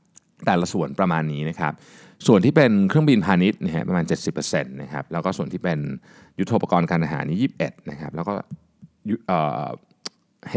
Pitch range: 75-120 Hz